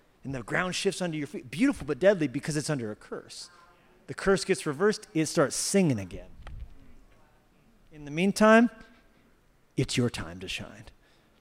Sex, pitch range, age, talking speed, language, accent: male, 150-190 Hz, 30-49, 165 wpm, English, American